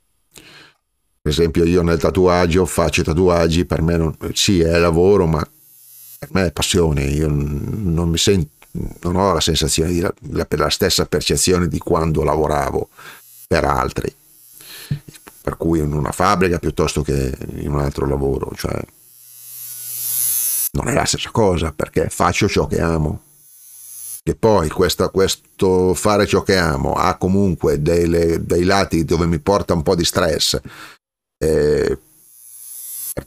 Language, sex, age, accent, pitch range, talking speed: Italian, male, 40-59, native, 80-120 Hz, 145 wpm